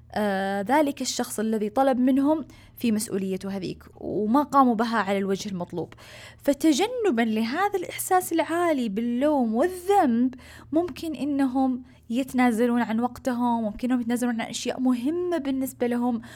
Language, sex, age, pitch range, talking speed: Arabic, female, 20-39, 205-270 Hz, 120 wpm